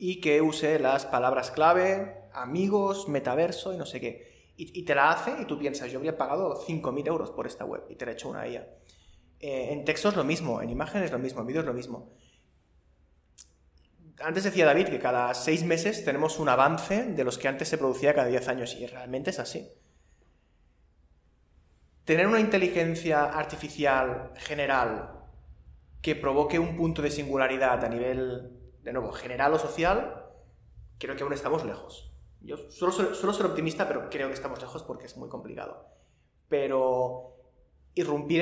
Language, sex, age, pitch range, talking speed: Spanish, male, 20-39, 125-155 Hz, 175 wpm